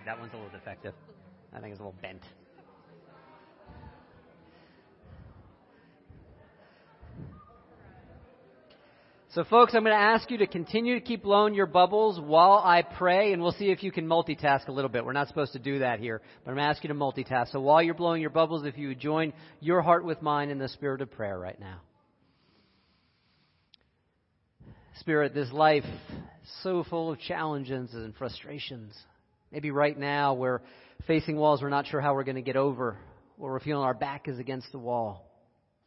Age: 40-59